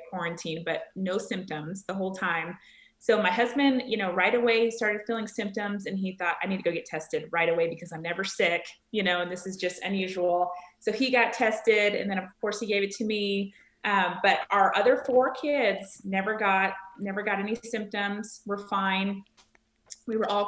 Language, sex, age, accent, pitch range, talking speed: English, female, 30-49, American, 180-220 Hz, 205 wpm